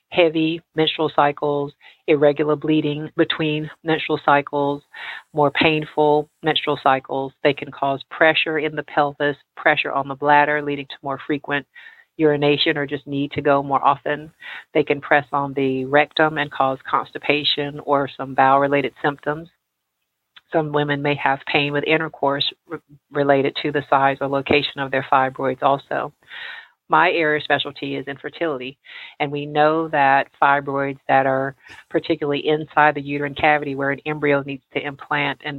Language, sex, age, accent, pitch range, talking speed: English, female, 40-59, American, 140-150 Hz, 150 wpm